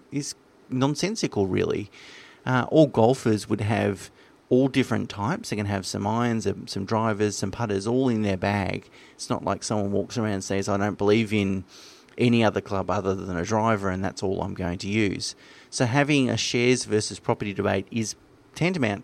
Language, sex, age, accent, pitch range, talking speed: English, male, 30-49, Australian, 100-120 Hz, 185 wpm